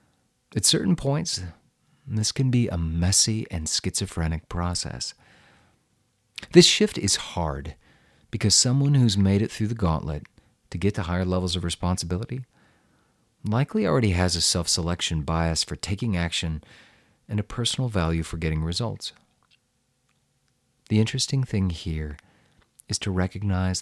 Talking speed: 135 wpm